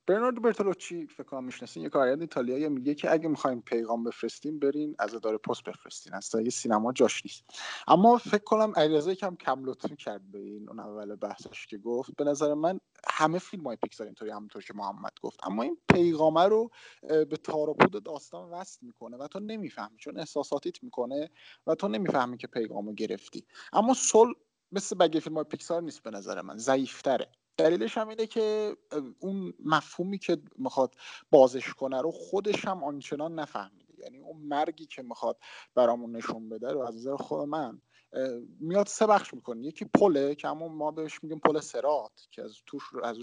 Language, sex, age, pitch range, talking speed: Persian, male, 30-49, 130-190 Hz, 180 wpm